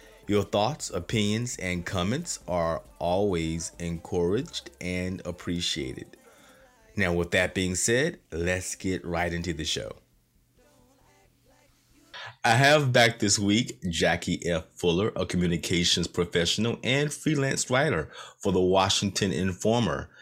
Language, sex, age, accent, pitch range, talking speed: English, male, 30-49, American, 85-110 Hz, 115 wpm